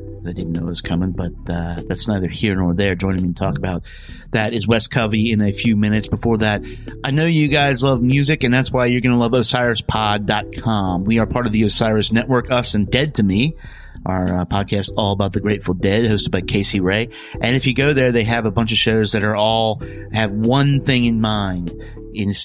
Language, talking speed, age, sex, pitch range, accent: English, 230 wpm, 30-49, male, 95-115 Hz, American